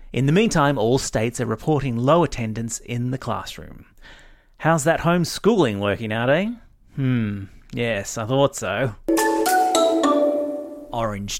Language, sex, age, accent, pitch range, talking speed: English, male, 30-49, Australian, 110-150 Hz, 125 wpm